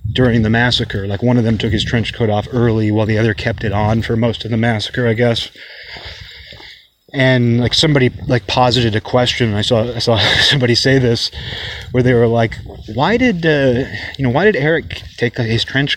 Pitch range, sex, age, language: 105-130 Hz, male, 30-49, English